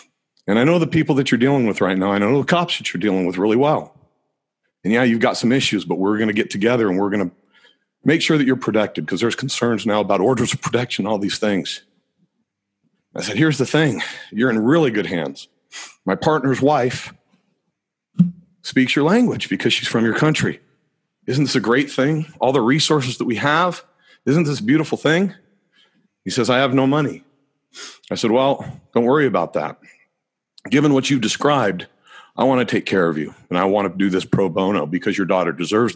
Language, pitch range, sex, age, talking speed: English, 115-155 Hz, male, 40-59, 210 wpm